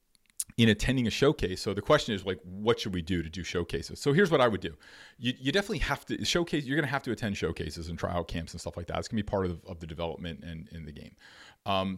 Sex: male